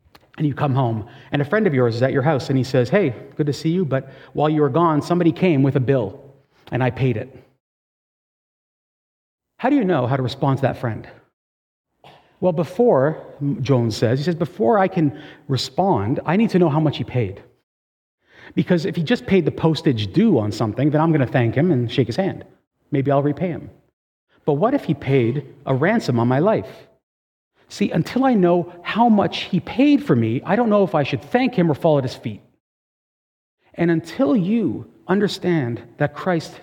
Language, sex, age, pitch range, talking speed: English, male, 40-59, 130-180 Hz, 205 wpm